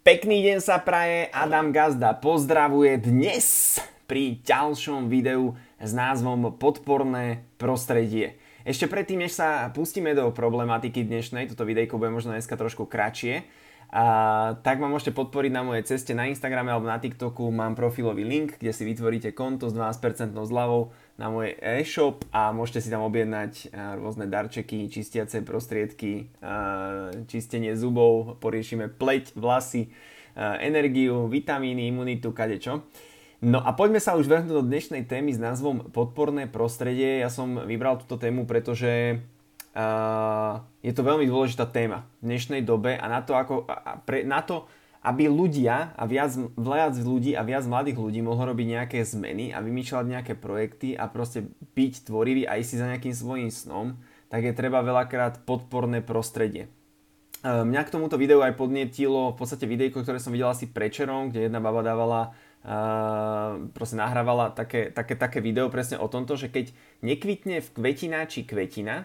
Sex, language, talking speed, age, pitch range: male, Slovak, 150 wpm, 20-39, 115-135 Hz